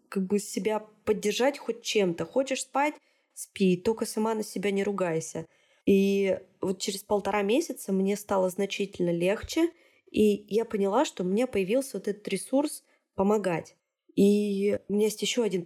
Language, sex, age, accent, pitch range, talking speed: Russian, female, 20-39, native, 175-220 Hz, 155 wpm